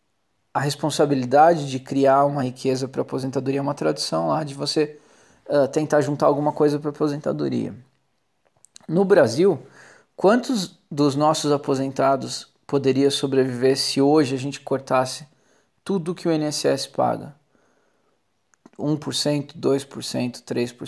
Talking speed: 120 wpm